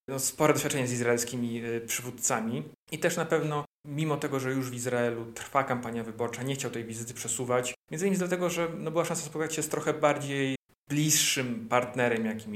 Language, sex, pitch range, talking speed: Polish, male, 120-150 Hz, 175 wpm